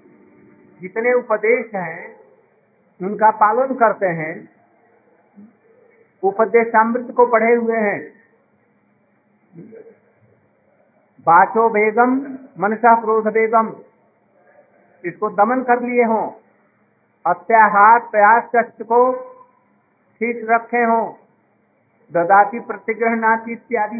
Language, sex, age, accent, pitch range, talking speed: Hindi, male, 50-69, native, 200-235 Hz, 65 wpm